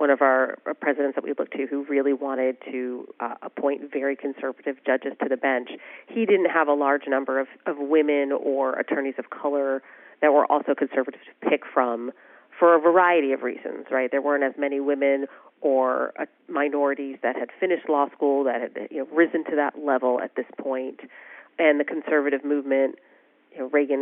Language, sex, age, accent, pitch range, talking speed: English, female, 40-59, American, 135-160 Hz, 180 wpm